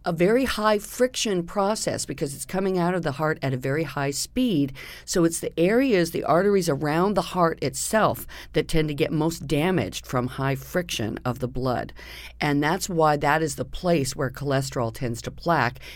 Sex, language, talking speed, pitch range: female, English, 190 wpm, 130-175 Hz